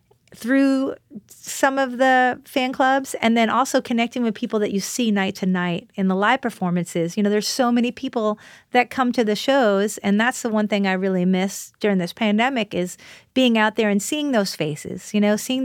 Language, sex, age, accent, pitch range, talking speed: English, female, 30-49, American, 190-245 Hz, 210 wpm